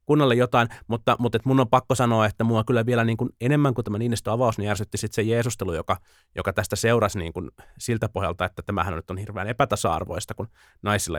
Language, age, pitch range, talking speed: Finnish, 30-49, 90-110 Hz, 220 wpm